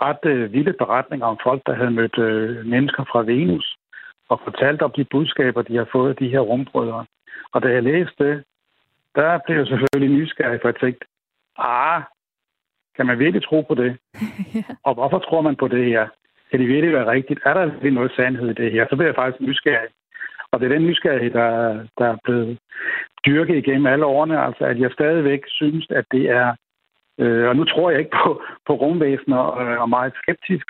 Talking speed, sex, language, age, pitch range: 200 wpm, male, Danish, 60-79, 125-155 Hz